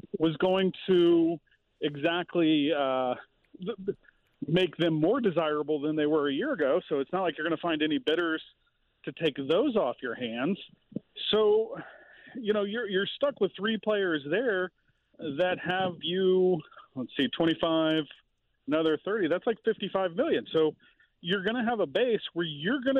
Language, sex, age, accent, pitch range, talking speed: English, male, 40-59, American, 165-230 Hz, 165 wpm